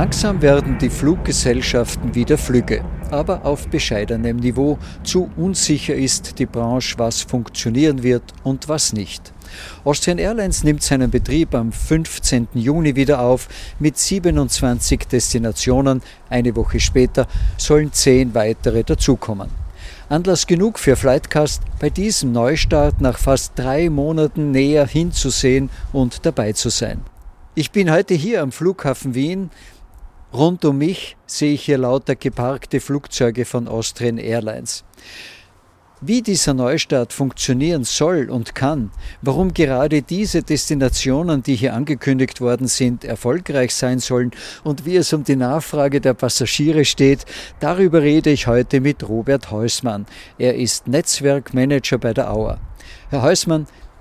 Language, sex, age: German, male, 50-69